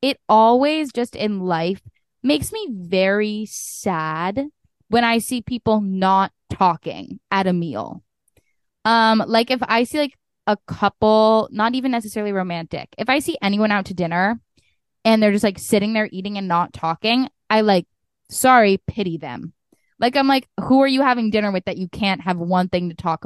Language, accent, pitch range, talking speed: English, American, 180-230 Hz, 180 wpm